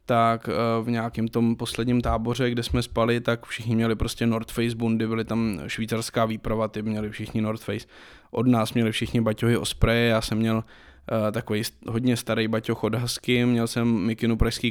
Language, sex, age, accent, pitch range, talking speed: Czech, male, 20-39, native, 110-125 Hz, 180 wpm